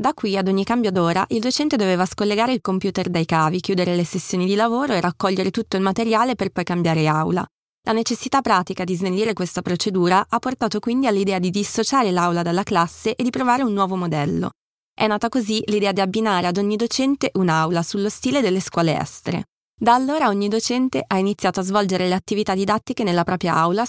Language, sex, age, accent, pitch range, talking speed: Italian, female, 20-39, native, 180-225 Hz, 200 wpm